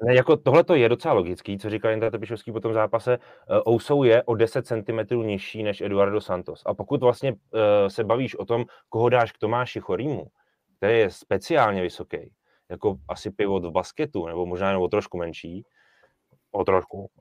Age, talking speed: 30-49, 170 wpm